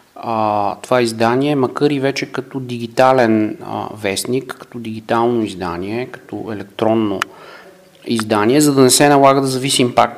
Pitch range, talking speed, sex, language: 110-140 Hz, 130 wpm, male, Bulgarian